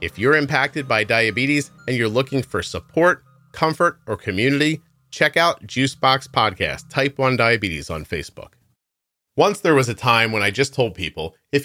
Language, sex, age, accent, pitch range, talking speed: English, male, 30-49, American, 110-140 Hz, 170 wpm